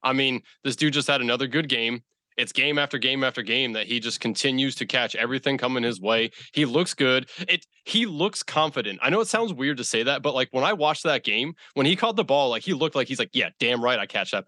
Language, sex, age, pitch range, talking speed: English, male, 20-39, 115-150 Hz, 265 wpm